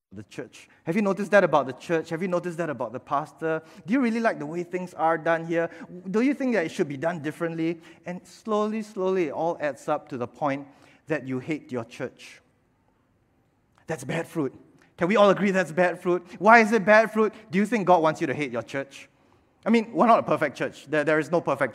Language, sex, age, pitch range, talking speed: English, male, 20-39, 150-195 Hz, 240 wpm